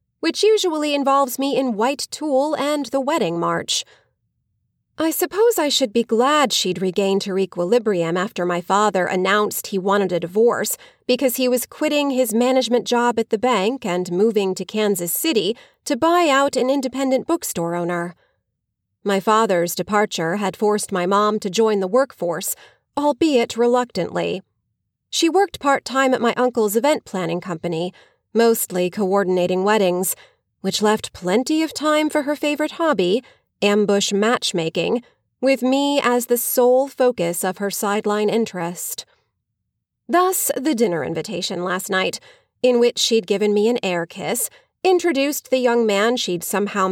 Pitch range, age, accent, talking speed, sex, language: 185-265 Hz, 30-49, American, 150 wpm, female, English